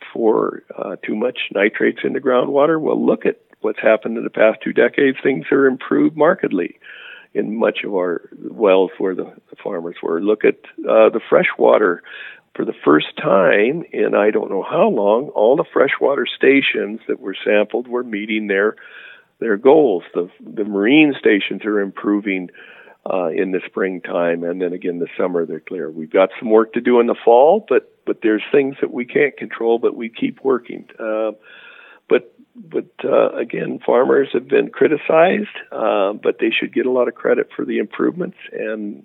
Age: 50-69